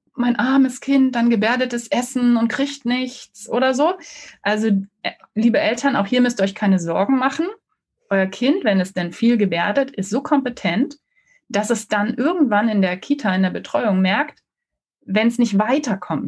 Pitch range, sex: 205-265 Hz, female